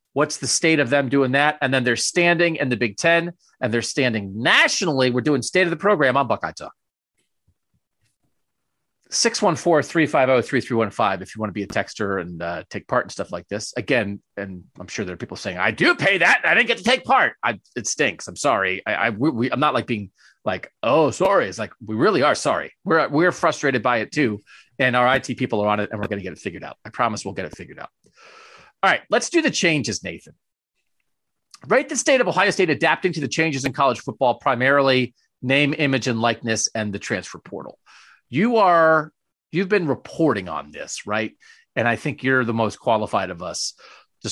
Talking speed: 220 wpm